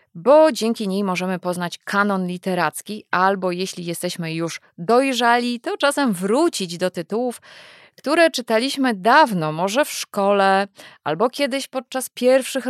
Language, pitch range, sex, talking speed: Polish, 175-230 Hz, female, 130 wpm